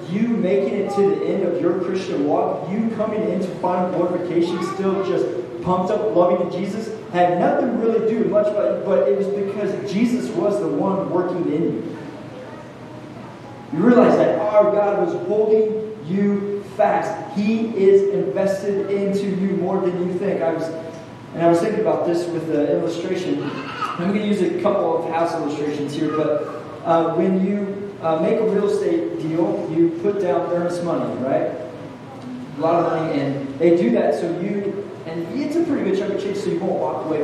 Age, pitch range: 30-49, 160-200 Hz